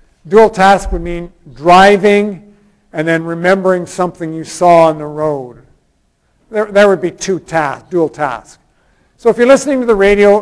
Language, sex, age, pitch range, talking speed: English, male, 50-69, 175-215 Hz, 165 wpm